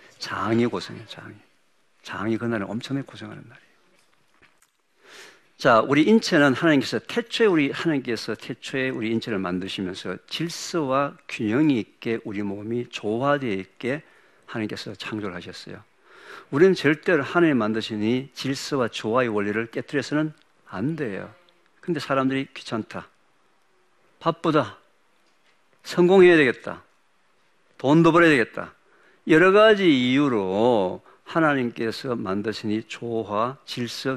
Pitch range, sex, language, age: 110-150 Hz, male, Korean, 50-69